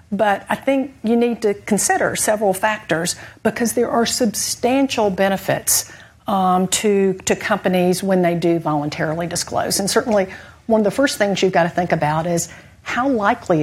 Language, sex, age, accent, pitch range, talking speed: English, female, 50-69, American, 180-225 Hz, 165 wpm